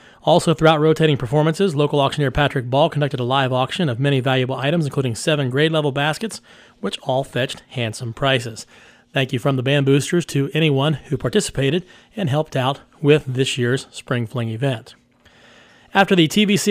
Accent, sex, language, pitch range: American, male, English, 135-155 Hz